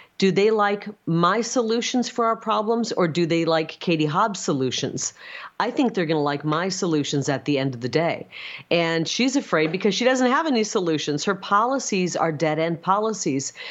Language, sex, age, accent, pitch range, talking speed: English, female, 40-59, American, 155-215 Hz, 185 wpm